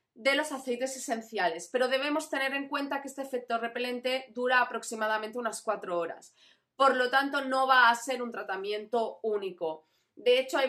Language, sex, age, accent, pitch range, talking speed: Spanish, female, 30-49, Spanish, 225-265 Hz, 175 wpm